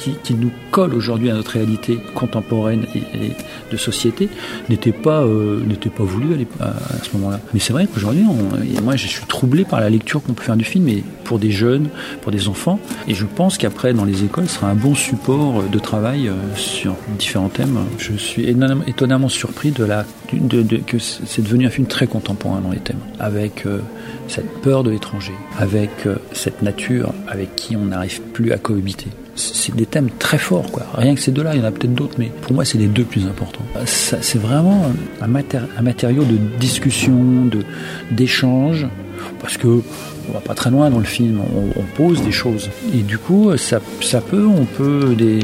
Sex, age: male, 40-59